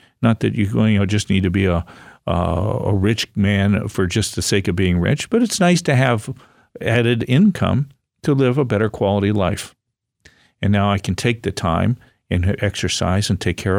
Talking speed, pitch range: 200 wpm, 100-120 Hz